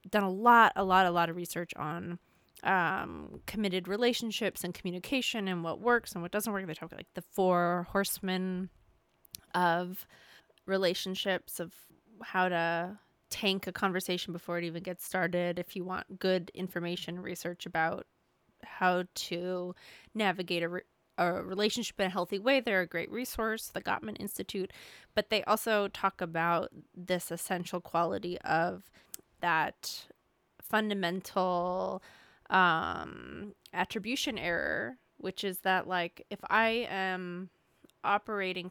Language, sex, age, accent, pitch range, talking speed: English, female, 20-39, American, 175-210 Hz, 135 wpm